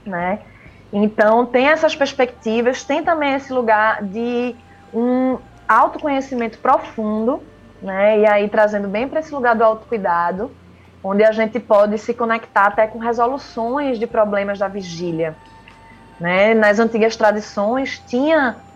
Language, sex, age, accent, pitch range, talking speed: Portuguese, female, 20-39, Brazilian, 210-255 Hz, 130 wpm